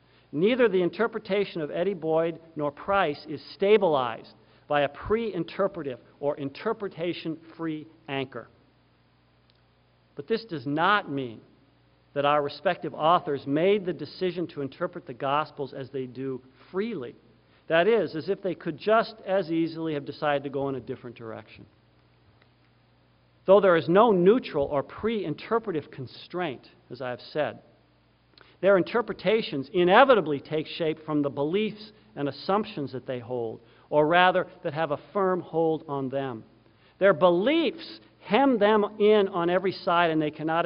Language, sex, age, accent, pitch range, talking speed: English, male, 50-69, American, 135-185 Hz, 145 wpm